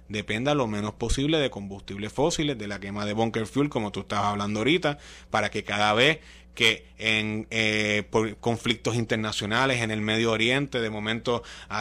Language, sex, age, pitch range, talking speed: Spanish, male, 30-49, 110-155 Hz, 180 wpm